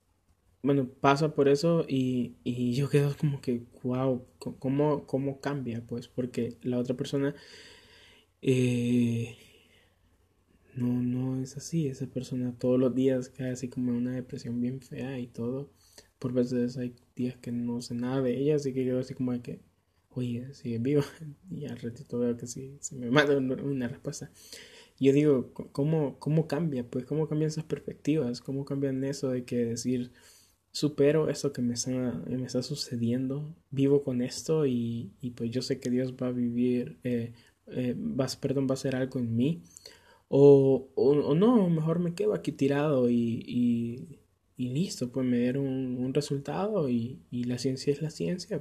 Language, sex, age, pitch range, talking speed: Spanish, male, 20-39, 120-140 Hz, 170 wpm